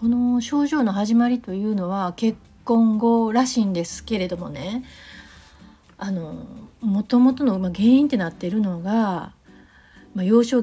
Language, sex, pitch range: Japanese, female, 190-250 Hz